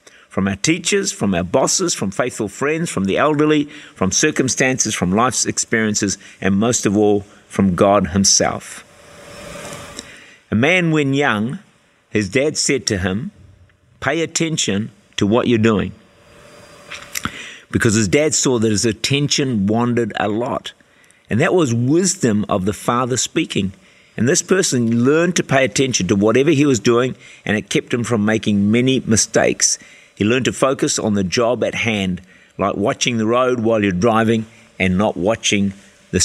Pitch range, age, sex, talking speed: 100-135 Hz, 50-69, male, 160 wpm